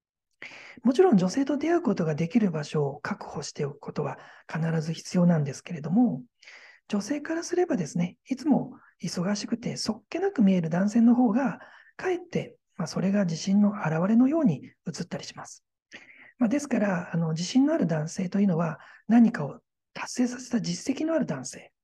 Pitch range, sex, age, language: 175-270 Hz, male, 40-59, Japanese